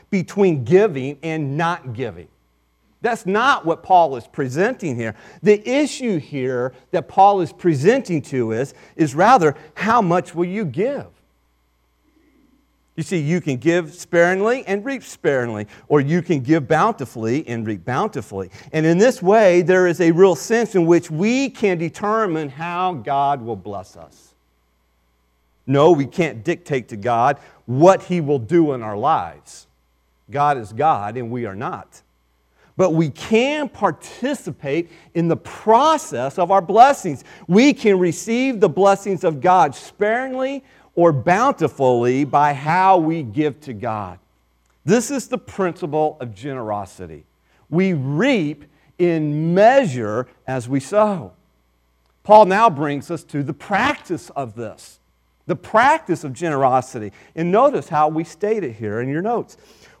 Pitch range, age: 125-190 Hz, 40-59